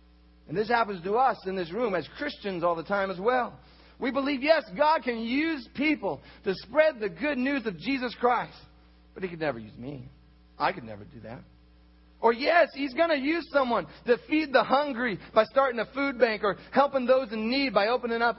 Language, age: English, 40-59